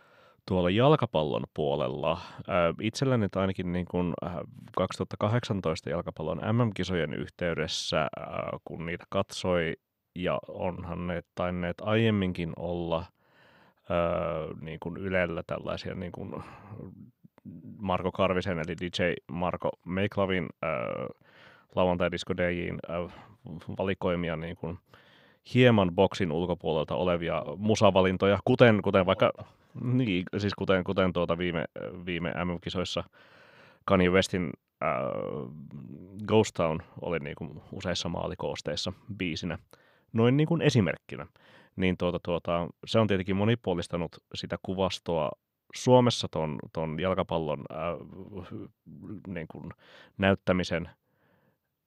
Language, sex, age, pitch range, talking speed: Finnish, male, 30-49, 85-100 Hz, 95 wpm